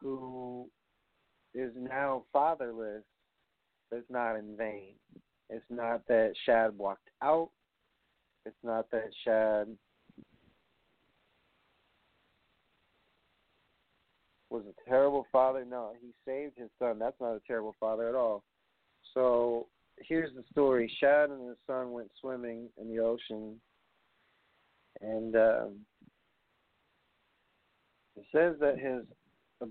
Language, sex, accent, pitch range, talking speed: English, male, American, 110-135 Hz, 110 wpm